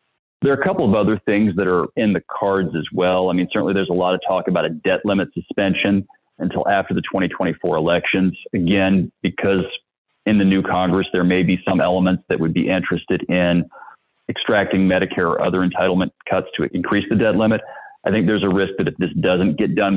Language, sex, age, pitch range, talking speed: English, male, 30-49, 90-105 Hz, 210 wpm